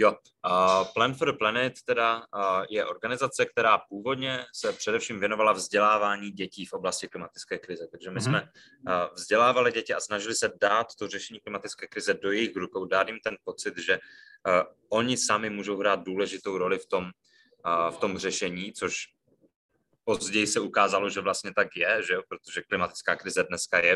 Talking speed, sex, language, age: 165 wpm, male, Czech, 20-39